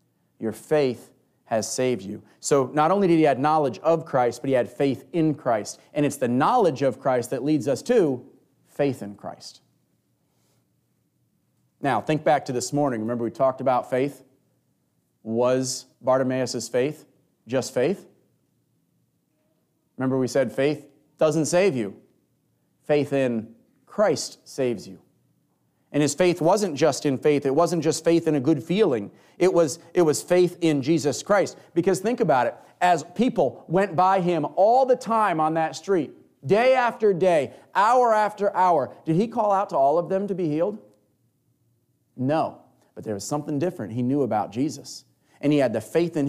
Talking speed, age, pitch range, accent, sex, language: 170 wpm, 30-49, 125-165 Hz, American, male, English